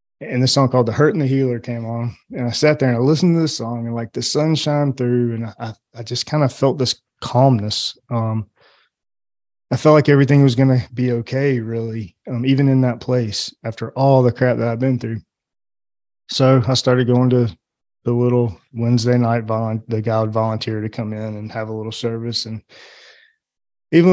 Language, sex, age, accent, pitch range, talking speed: English, male, 20-39, American, 115-130 Hz, 210 wpm